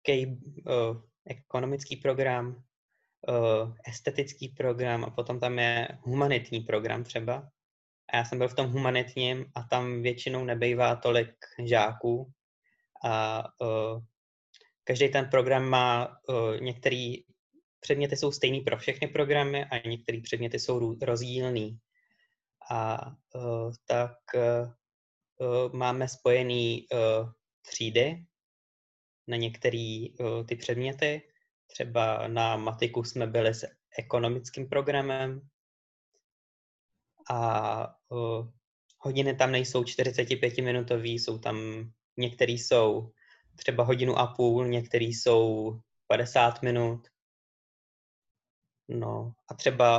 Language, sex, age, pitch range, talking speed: Czech, male, 20-39, 115-130 Hz, 105 wpm